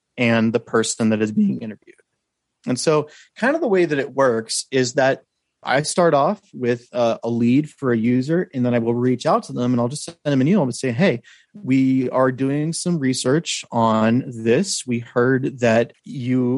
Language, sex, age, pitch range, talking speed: English, male, 30-49, 120-145 Hz, 205 wpm